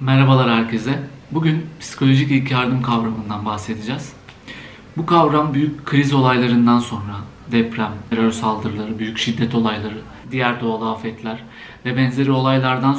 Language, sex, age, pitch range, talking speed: Turkish, male, 50-69, 115-140 Hz, 120 wpm